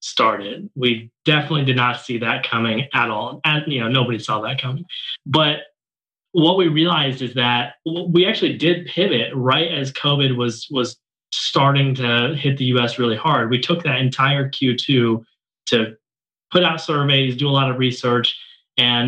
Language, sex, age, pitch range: English, male, 20-39, 125-145 Hz